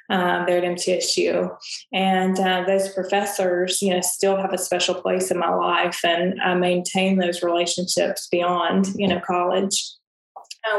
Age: 20-39